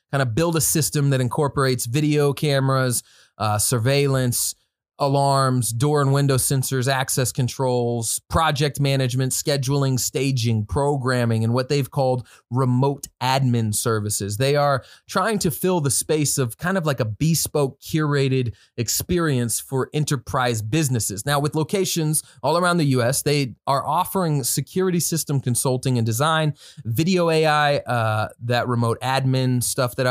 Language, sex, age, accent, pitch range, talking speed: English, male, 20-39, American, 120-145 Hz, 140 wpm